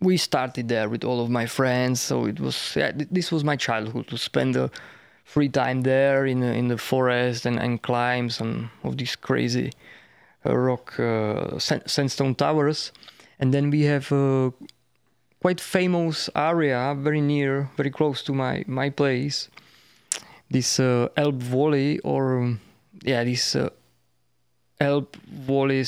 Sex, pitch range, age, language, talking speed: male, 120-150 Hz, 20-39, English, 160 wpm